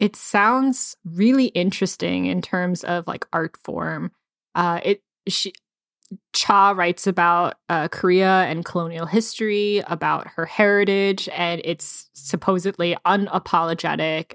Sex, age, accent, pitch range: female, 20-39, American, 170-195 Hz